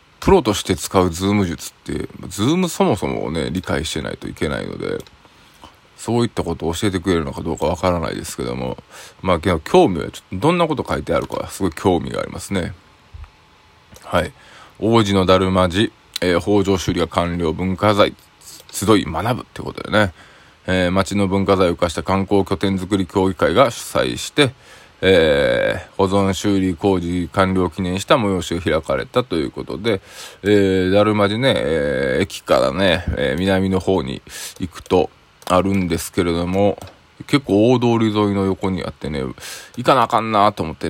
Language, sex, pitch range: Japanese, male, 90-105 Hz